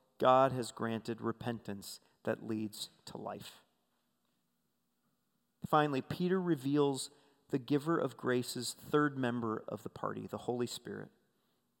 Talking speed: 115 wpm